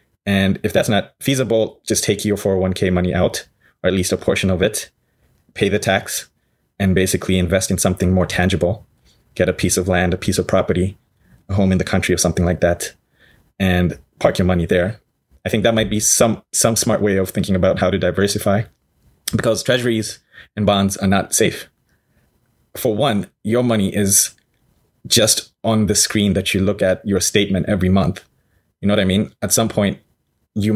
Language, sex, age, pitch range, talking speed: English, male, 20-39, 95-105 Hz, 195 wpm